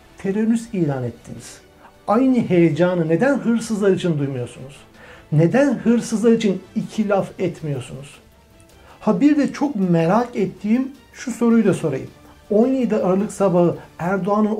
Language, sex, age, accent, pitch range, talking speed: Turkish, male, 60-79, native, 160-225 Hz, 120 wpm